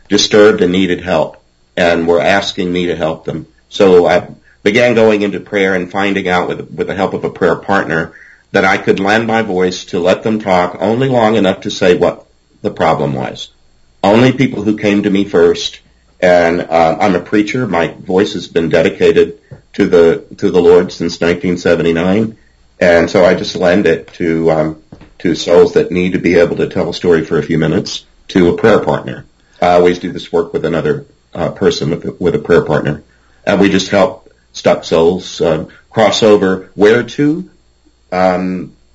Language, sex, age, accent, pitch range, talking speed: English, male, 50-69, American, 75-105 Hz, 195 wpm